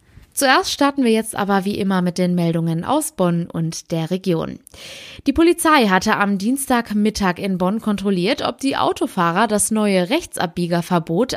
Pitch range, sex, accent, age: 180-245 Hz, female, German, 20-39